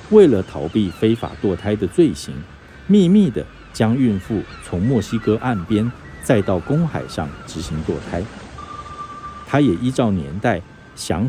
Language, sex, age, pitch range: Chinese, male, 50-69, 90-125 Hz